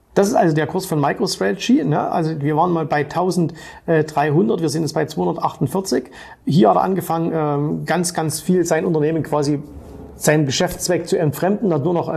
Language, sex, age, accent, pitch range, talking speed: German, male, 40-59, German, 145-185 Hz, 185 wpm